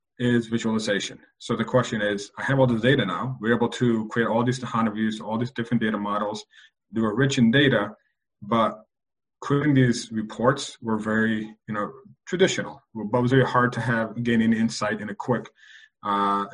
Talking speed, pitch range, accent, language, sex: 185 wpm, 100-115 Hz, American, English, male